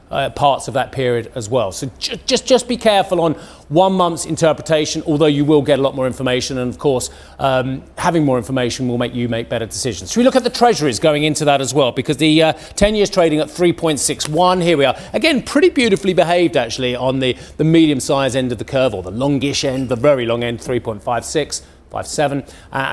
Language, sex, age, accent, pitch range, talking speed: English, male, 40-59, British, 130-175 Hz, 220 wpm